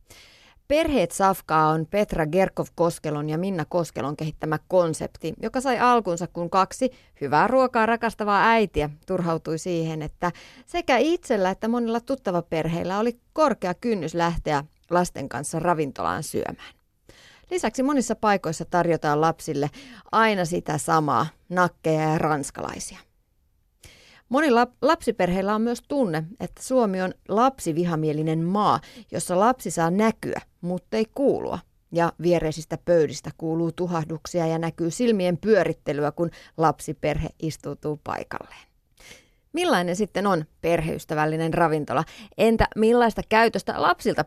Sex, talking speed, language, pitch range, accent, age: female, 120 wpm, Finnish, 160-220 Hz, native, 30-49